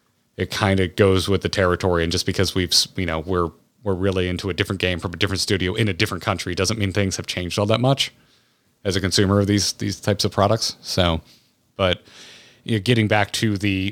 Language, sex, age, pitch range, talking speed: English, male, 30-49, 95-115 Hz, 230 wpm